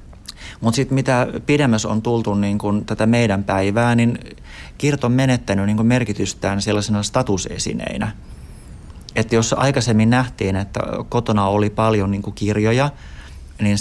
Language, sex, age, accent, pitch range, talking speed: Finnish, male, 30-49, native, 100-120 Hz, 130 wpm